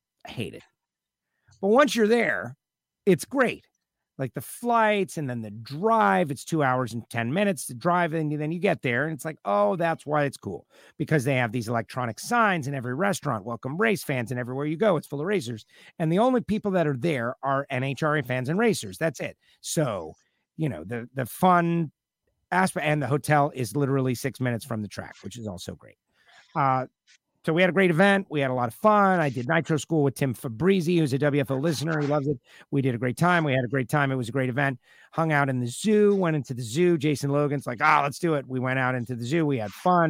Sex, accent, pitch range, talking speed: male, American, 125-170 Hz, 240 wpm